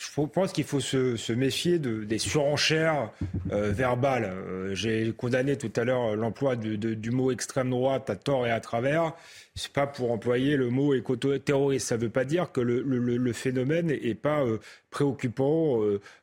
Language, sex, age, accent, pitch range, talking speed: French, male, 30-49, French, 115-145 Hz, 205 wpm